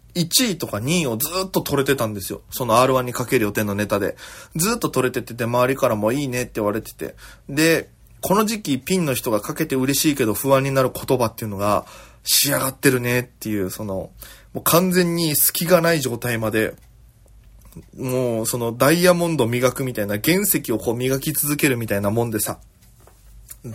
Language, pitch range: Japanese, 110-140 Hz